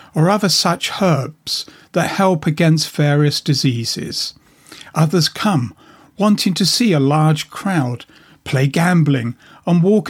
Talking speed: 125 wpm